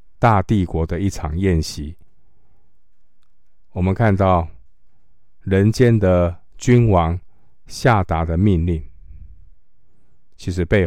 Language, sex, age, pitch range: Chinese, male, 50-69, 80-95 Hz